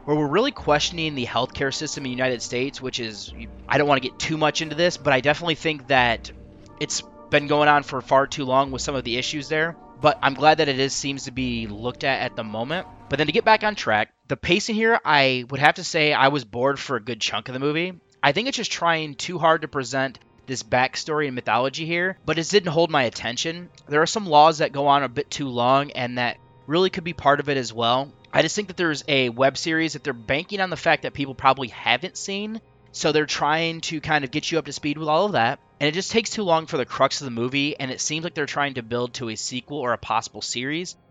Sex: male